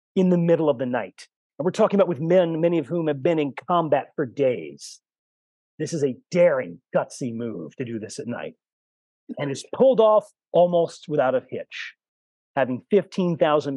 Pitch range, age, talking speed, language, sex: 130-195 Hz, 40-59, 185 wpm, English, male